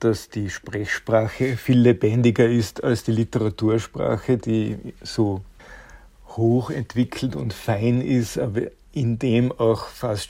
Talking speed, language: 115 wpm, German